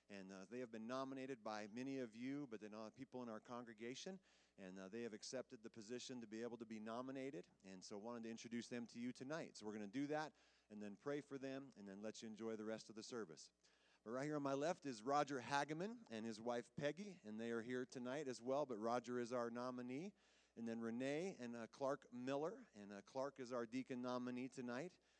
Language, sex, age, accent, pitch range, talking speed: English, male, 40-59, American, 110-135 Hz, 240 wpm